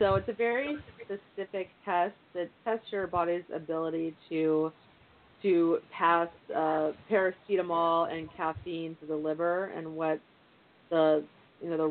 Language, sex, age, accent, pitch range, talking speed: English, female, 30-49, American, 170-210 Hz, 135 wpm